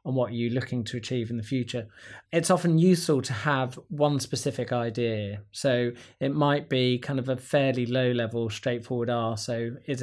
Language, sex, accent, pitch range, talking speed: English, male, British, 120-140 Hz, 185 wpm